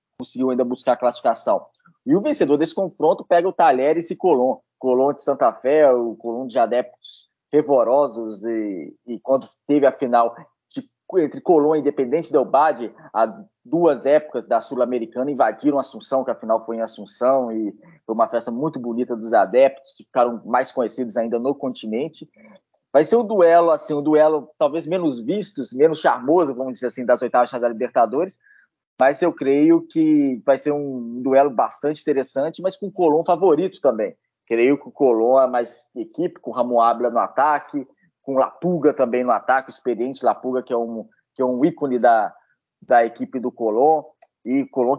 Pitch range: 125-155 Hz